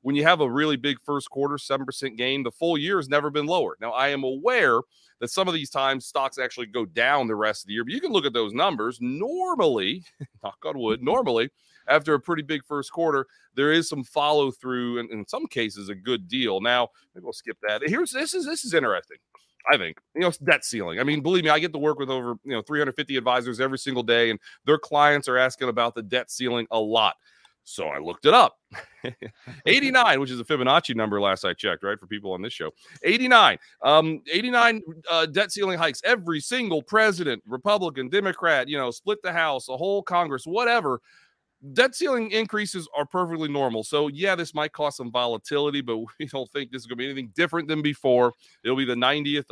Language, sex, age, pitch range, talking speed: English, male, 30-49, 125-165 Hz, 220 wpm